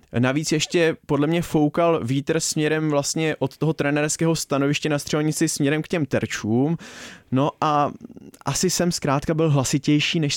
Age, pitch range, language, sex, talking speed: 20-39, 135-165 Hz, Czech, male, 150 wpm